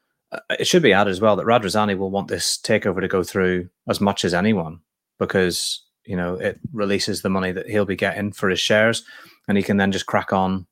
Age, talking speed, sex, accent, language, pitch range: 30-49, 225 wpm, male, British, English, 95-110 Hz